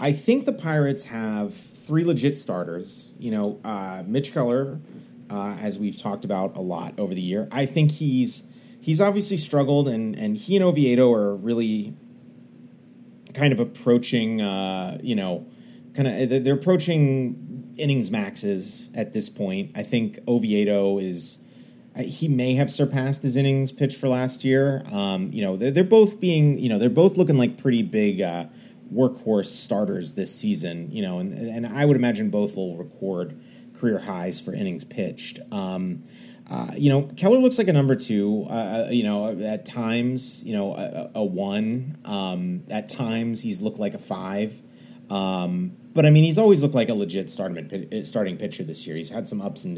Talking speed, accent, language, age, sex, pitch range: 180 wpm, American, English, 30-49, male, 105-150 Hz